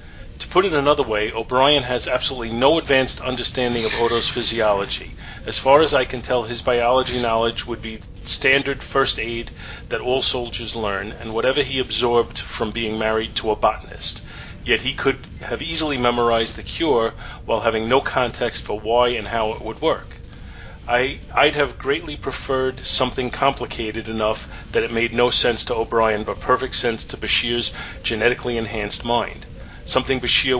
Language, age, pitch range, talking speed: English, 40-59, 110-125 Hz, 165 wpm